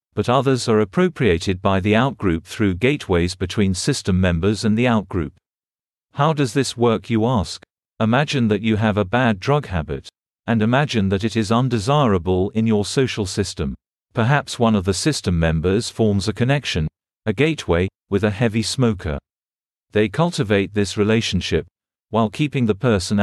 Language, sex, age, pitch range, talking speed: English, male, 50-69, 95-120 Hz, 160 wpm